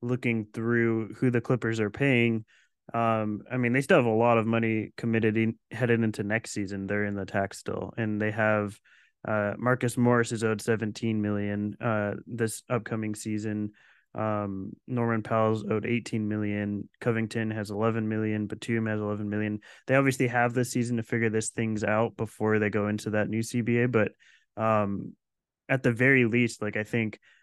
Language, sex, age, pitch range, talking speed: English, male, 20-39, 105-120 Hz, 180 wpm